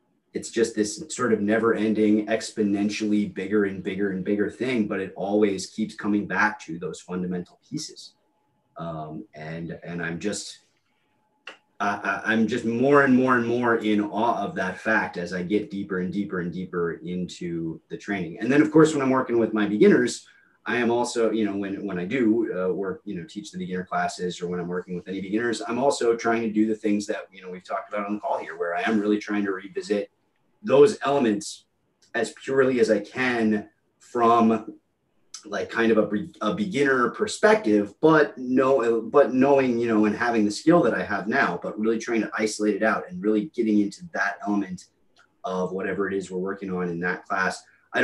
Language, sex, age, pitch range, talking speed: English, male, 30-49, 95-115 Hz, 205 wpm